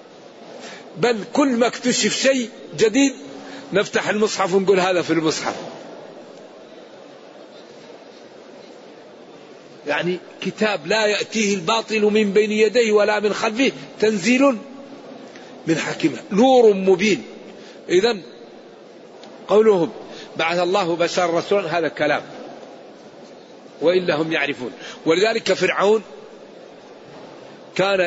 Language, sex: Arabic, male